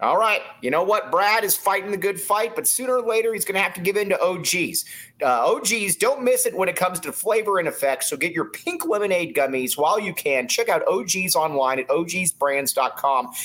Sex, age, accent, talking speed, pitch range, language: male, 30-49, American, 230 wpm, 150-200 Hz, English